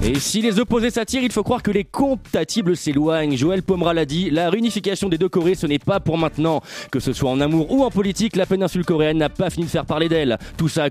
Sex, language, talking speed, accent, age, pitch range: male, French, 260 wpm, French, 20-39, 155-210 Hz